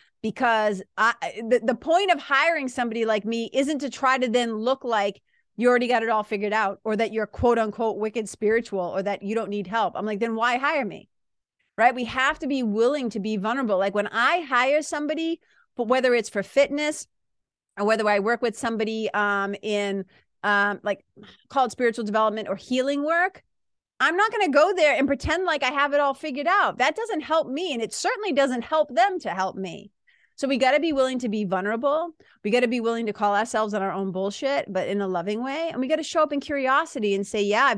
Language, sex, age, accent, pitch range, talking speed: English, female, 30-49, American, 205-275 Hz, 225 wpm